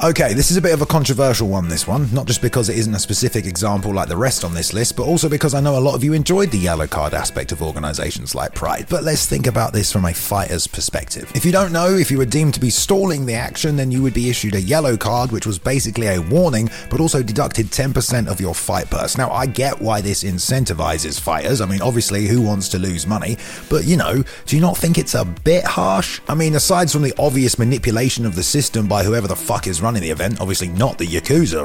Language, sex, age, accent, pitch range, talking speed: English, male, 30-49, British, 100-140 Hz, 255 wpm